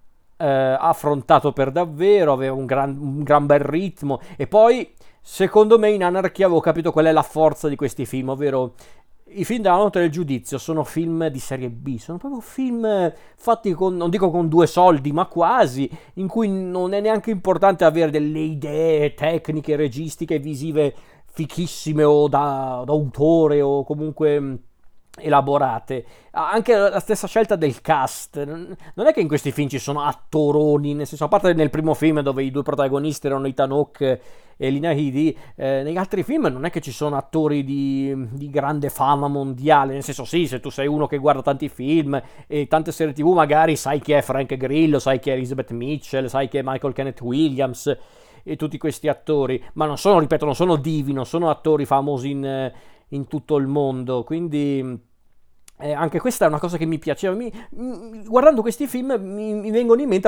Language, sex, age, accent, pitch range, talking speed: Italian, male, 40-59, native, 140-175 Hz, 185 wpm